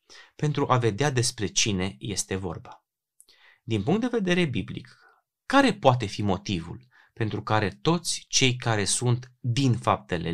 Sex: male